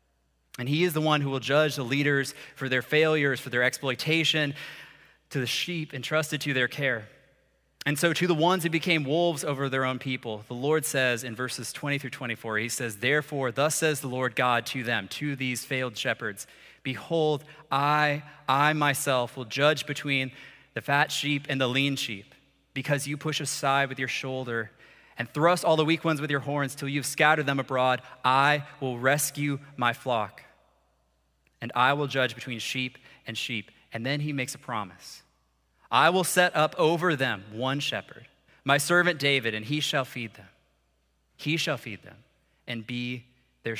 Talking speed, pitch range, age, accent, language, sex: 185 wpm, 115-145 Hz, 30-49, American, English, male